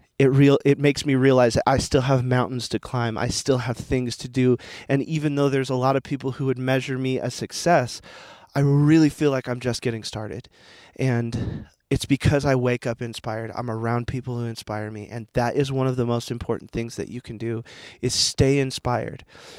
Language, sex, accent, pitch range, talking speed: English, male, American, 125-145 Hz, 215 wpm